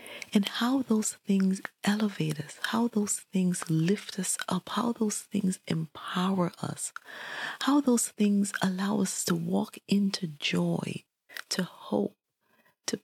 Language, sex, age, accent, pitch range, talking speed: English, female, 40-59, American, 180-240 Hz, 135 wpm